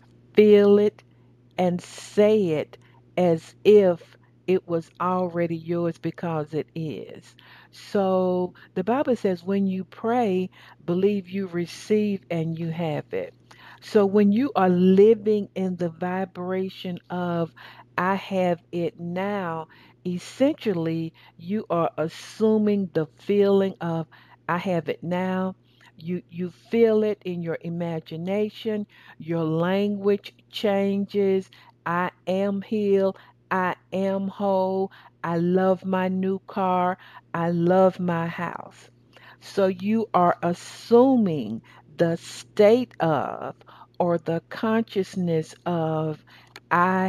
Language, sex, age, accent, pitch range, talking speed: English, female, 60-79, American, 165-195 Hz, 115 wpm